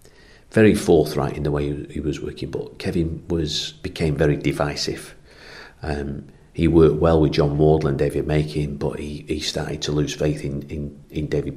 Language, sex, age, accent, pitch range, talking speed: English, male, 40-59, British, 75-85 Hz, 180 wpm